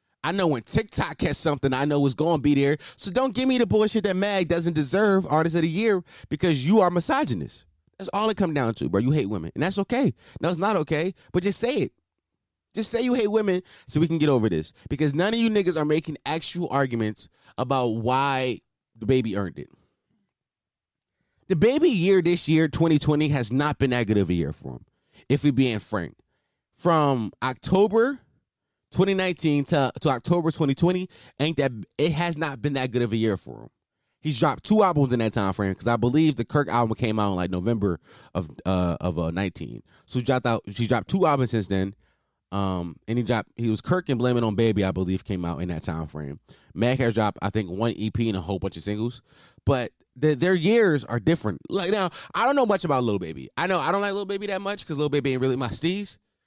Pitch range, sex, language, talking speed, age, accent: 110-175 Hz, male, English, 230 wpm, 20-39, American